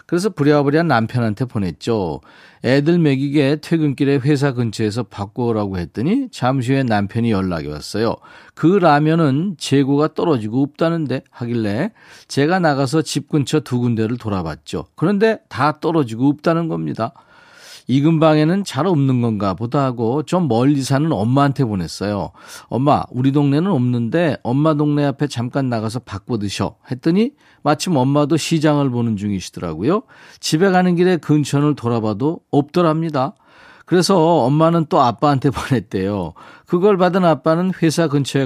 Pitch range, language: 120-170 Hz, Korean